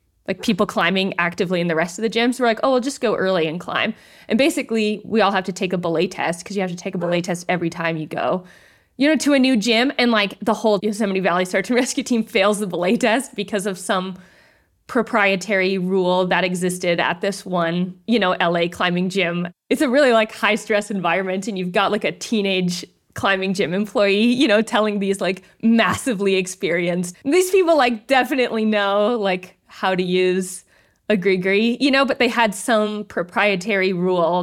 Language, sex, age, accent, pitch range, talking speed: English, female, 20-39, American, 180-220 Hz, 205 wpm